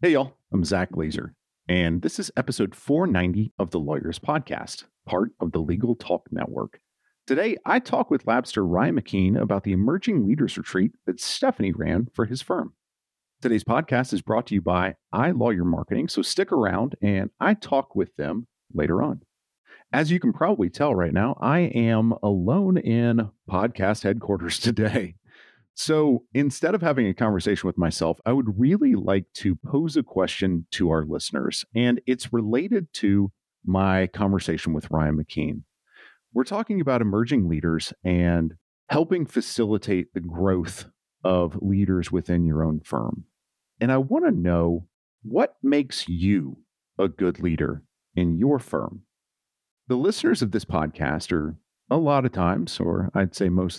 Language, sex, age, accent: English, male, 40-59, American